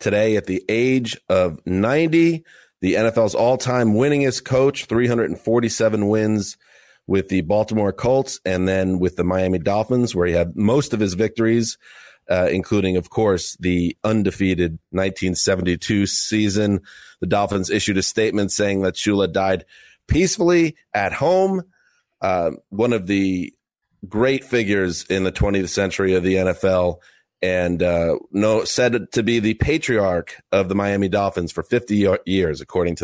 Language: English